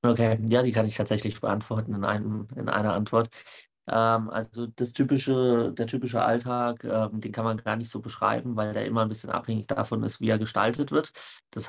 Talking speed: 205 wpm